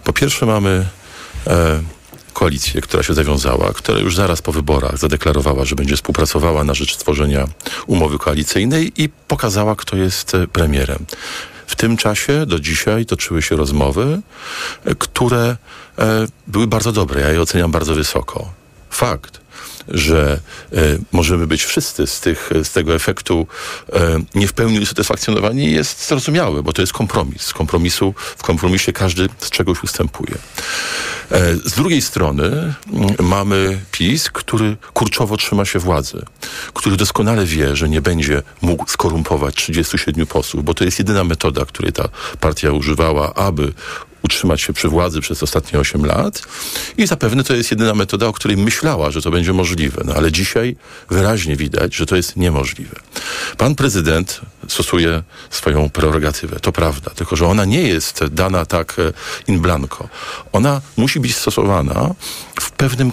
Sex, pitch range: male, 80-105 Hz